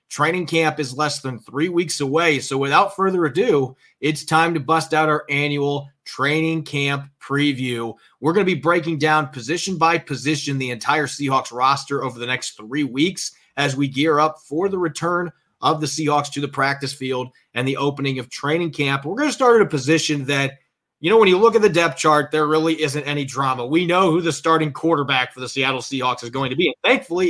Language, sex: English, male